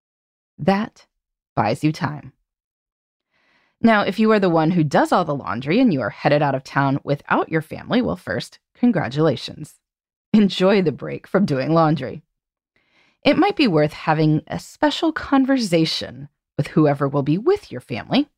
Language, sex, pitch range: English, female, 145-220 Hz